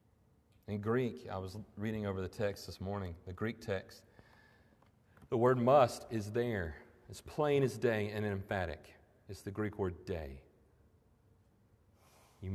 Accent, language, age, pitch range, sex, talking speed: American, English, 40-59, 100-140 Hz, male, 145 wpm